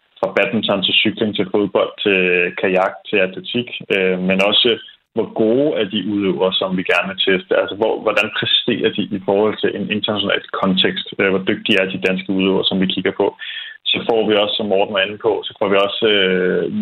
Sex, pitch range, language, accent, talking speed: male, 95-110 Hz, Danish, native, 205 wpm